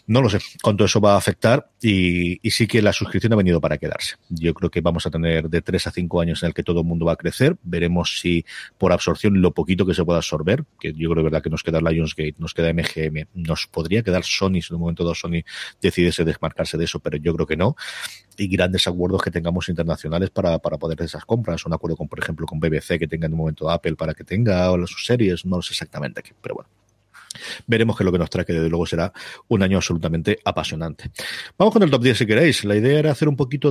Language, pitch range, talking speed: Spanish, 85-115 Hz, 255 wpm